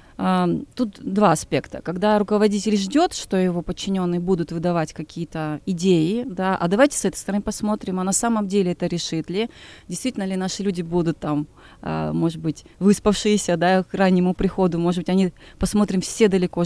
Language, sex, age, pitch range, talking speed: Russian, female, 20-39, 170-200 Hz, 175 wpm